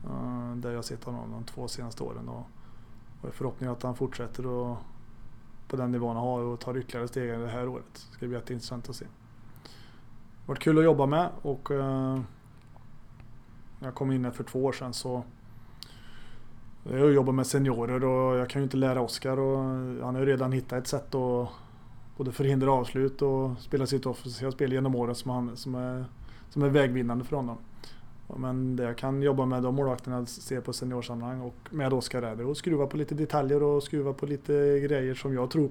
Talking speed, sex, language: 200 wpm, male, Swedish